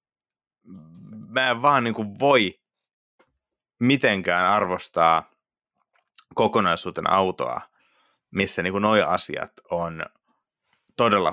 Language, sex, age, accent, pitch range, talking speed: Finnish, male, 30-49, native, 90-110 Hz, 90 wpm